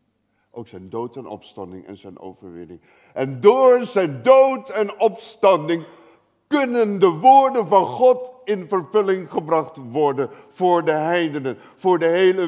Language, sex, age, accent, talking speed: Dutch, male, 50-69, Dutch, 140 wpm